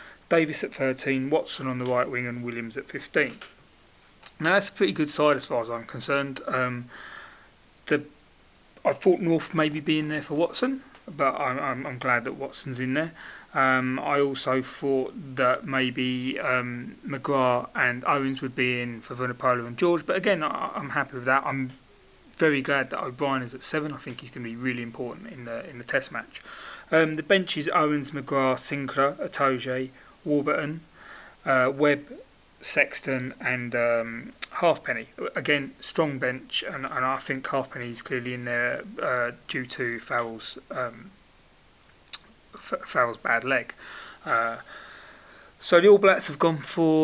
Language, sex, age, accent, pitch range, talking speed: English, male, 30-49, British, 125-150 Hz, 165 wpm